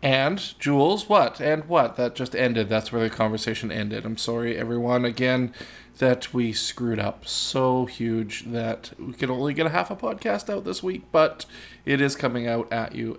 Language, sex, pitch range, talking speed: English, male, 110-130 Hz, 190 wpm